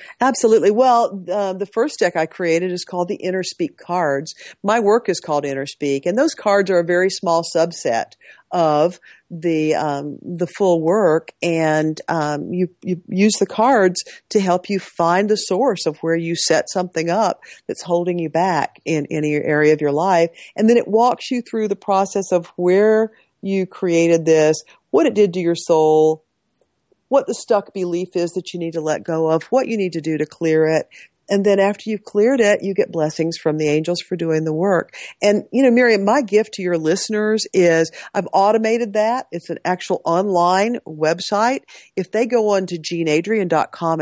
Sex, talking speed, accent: female, 195 wpm, American